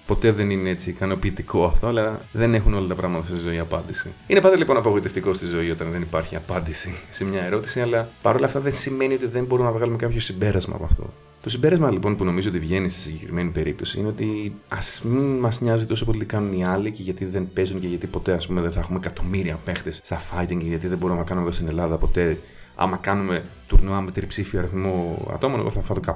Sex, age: male, 30-49